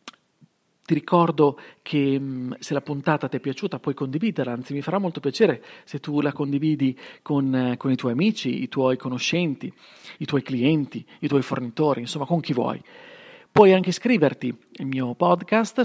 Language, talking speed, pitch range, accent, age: Italian, 170 wpm, 135-190 Hz, native, 40-59